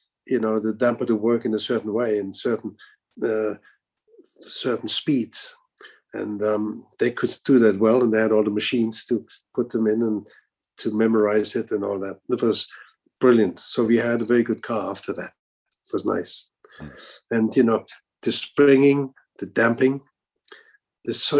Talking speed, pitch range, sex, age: 175 wpm, 110-130 Hz, male, 50-69